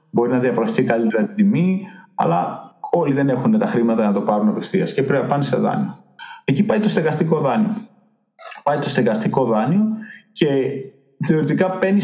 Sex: male